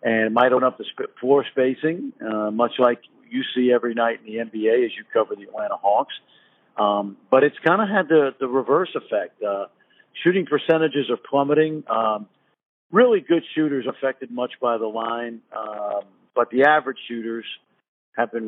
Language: English